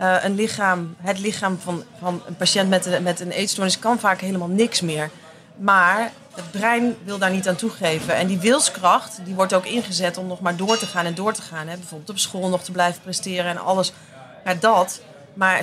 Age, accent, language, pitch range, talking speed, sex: 30-49, Dutch, Dutch, 180-220 Hz, 215 wpm, female